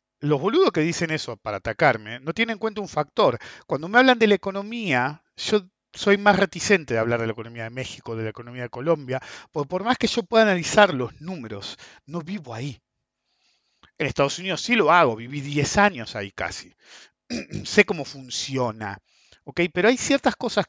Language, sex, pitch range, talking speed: English, male, 125-200 Hz, 190 wpm